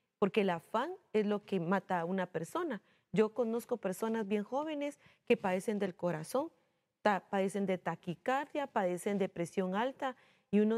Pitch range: 175-225 Hz